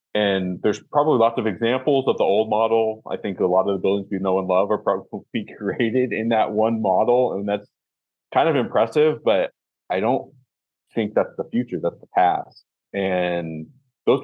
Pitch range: 90-115 Hz